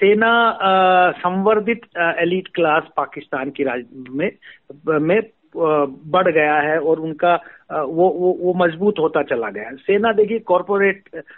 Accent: native